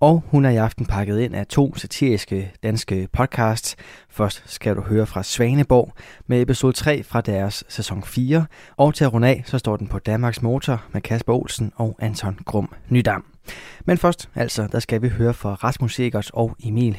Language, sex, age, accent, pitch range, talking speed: Danish, male, 20-39, native, 105-130 Hz, 190 wpm